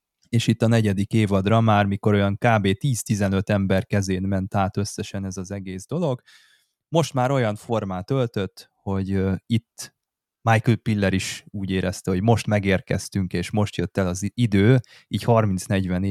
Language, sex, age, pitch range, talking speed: Hungarian, male, 20-39, 95-115 Hz, 155 wpm